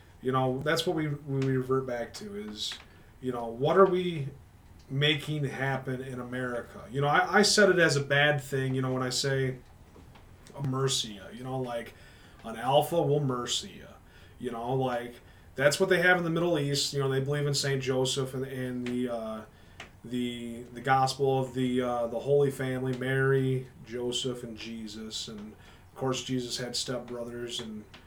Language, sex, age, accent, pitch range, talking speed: English, male, 30-49, American, 115-145 Hz, 185 wpm